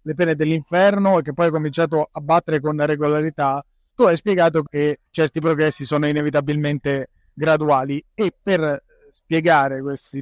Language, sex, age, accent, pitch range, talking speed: Italian, male, 30-49, native, 150-170 Hz, 145 wpm